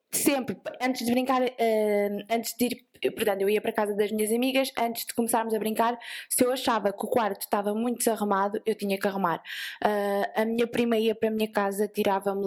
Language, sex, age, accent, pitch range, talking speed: Portuguese, female, 20-39, Brazilian, 200-240 Hz, 205 wpm